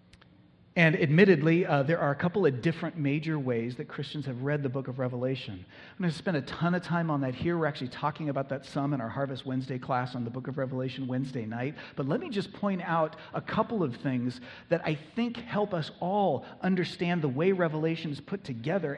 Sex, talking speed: male, 225 wpm